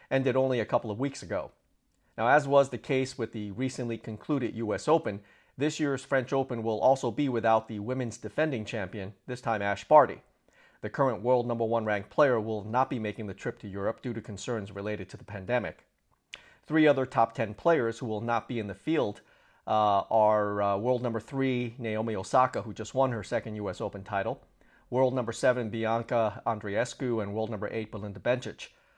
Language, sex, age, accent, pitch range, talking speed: English, male, 40-59, American, 110-130 Hz, 195 wpm